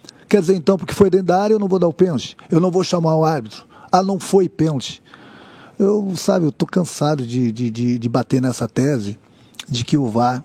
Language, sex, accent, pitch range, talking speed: Portuguese, male, Brazilian, 140-190 Hz, 220 wpm